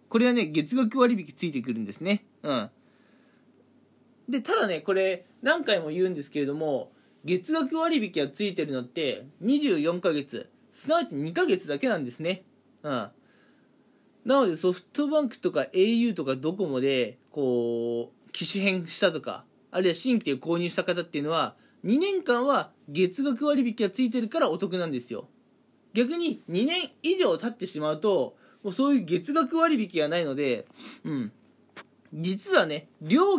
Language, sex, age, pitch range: Japanese, male, 20-39, 155-245 Hz